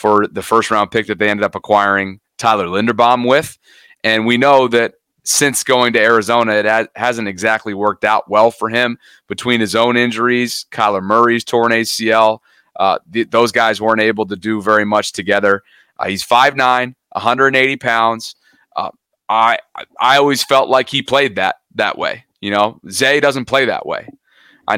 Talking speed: 175 wpm